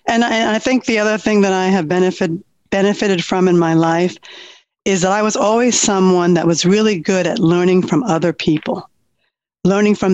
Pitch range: 170-205 Hz